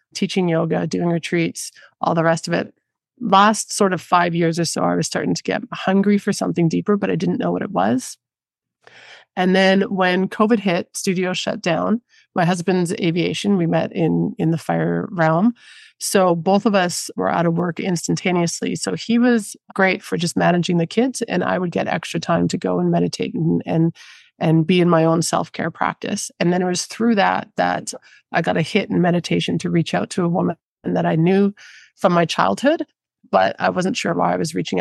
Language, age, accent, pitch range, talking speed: English, 30-49, American, 170-210 Hz, 210 wpm